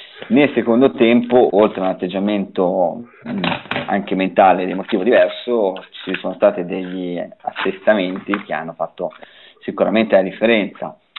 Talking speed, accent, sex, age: 130 wpm, native, male, 30-49